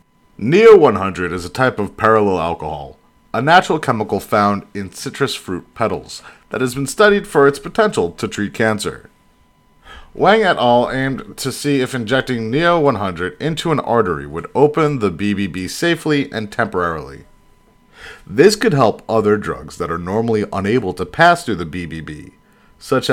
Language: English